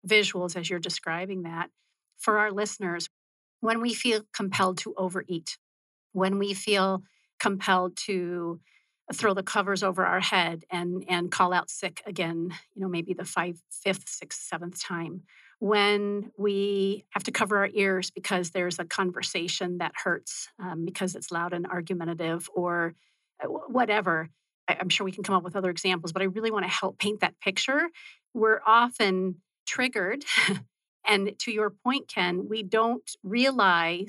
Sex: female